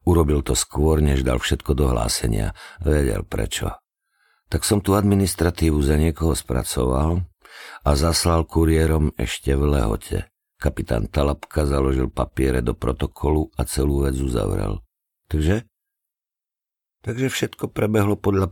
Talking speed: 125 wpm